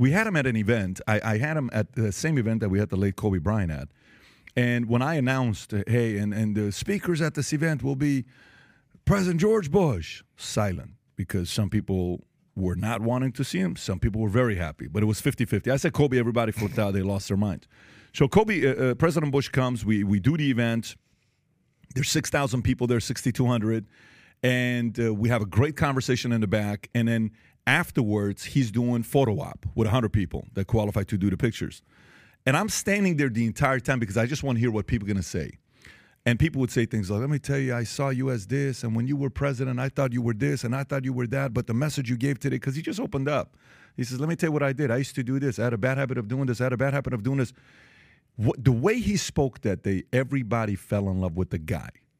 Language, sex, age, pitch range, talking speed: English, male, 40-59, 105-140 Hz, 245 wpm